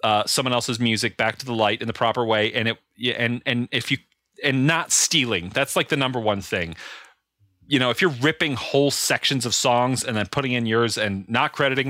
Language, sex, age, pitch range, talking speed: English, male, 40-59, 105-130 Hz, 215 wpm